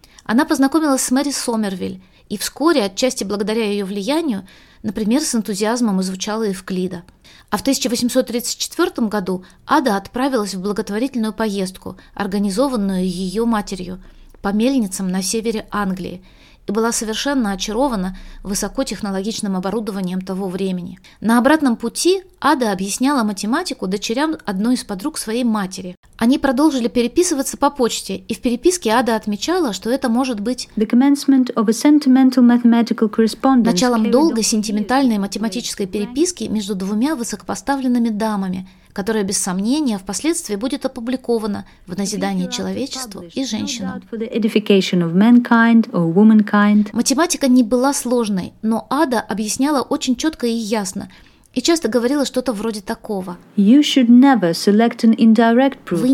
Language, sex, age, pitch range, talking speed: Russian, female, 20-39, 205-255 Hz, 115 wpm